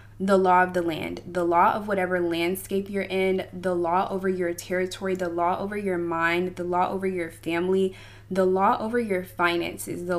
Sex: female